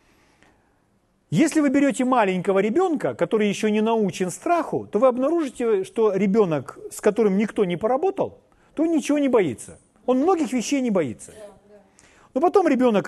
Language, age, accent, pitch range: Russian, 40-59, native, 150-220 Hz